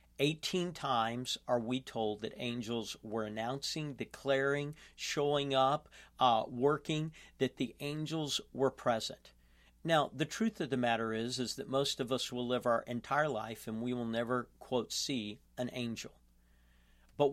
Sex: male